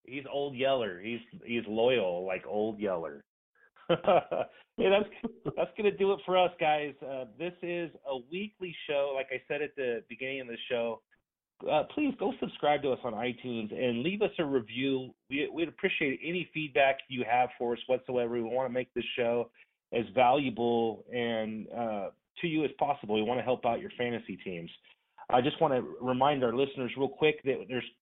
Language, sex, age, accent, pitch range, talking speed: English, male, 30-49, American, 115-150 Hz, 195 wpm